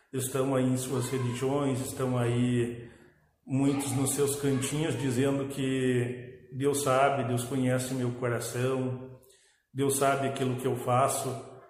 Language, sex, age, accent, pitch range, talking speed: Portuguese, male, 50-69, Brazilian, 125-140 Hz, 130 wpm